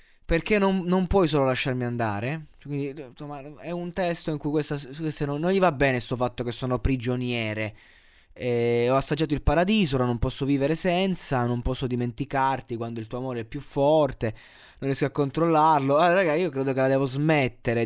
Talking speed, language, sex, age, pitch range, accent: 190 wpm, Italian, male, 20-39, 125-165 Hz, native